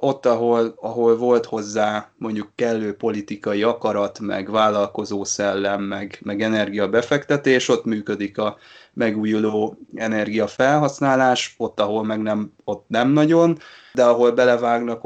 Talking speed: 120 wpm